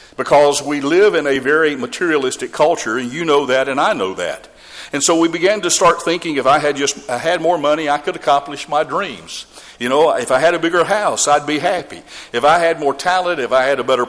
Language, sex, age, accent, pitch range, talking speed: English, male, 50-69, American, 140-170 Hz, 245 wpm